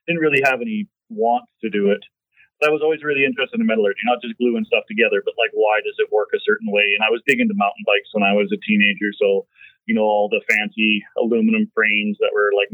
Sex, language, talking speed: male, English, 250 wpm